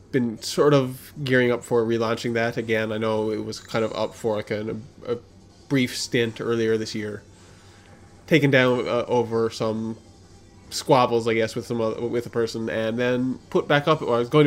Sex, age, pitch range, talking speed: male, 20-39, 110-125 Hz, 200 wpm